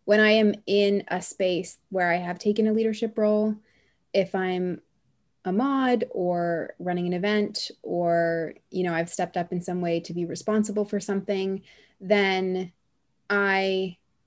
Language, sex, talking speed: English, female, 155 wpm